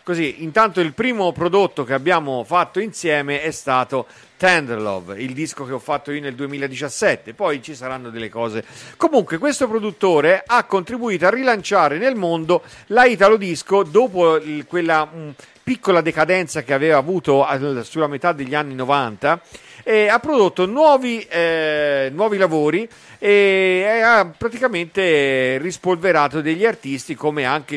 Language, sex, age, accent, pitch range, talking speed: Italian, male, 50-69, native, 140-205 Hz, 140 wpm